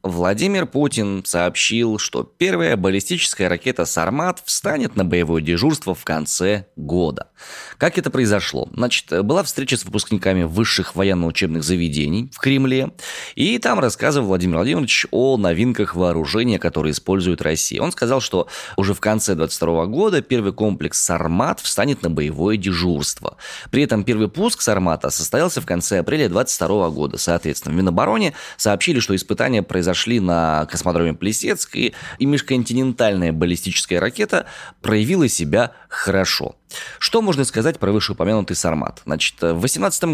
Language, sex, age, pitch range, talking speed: Russian, male, 20-39, 85-115 Hz, 140 wpm